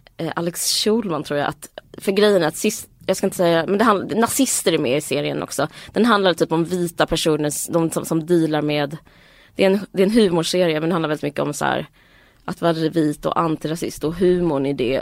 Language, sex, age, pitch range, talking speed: Swedish, female, 20-39, 160-200 Hz, 225 wpm